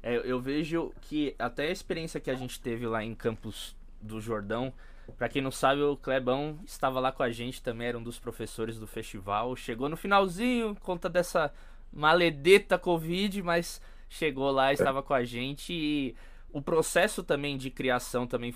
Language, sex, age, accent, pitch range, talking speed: Portuguese, male, 20-39, Brazilian, 125-165 Hz, 180 wpm